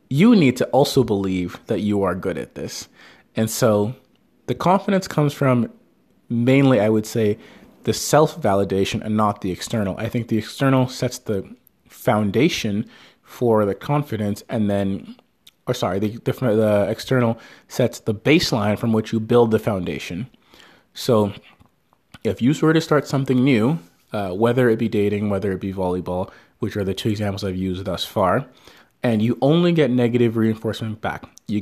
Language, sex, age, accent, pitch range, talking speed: English, male, 30-49, American, 100-125 Hz, 165 wpm